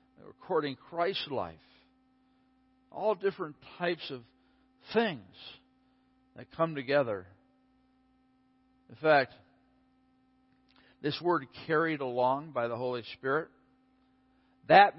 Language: English